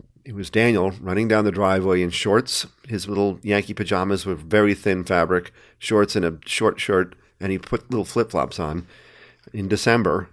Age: 50-69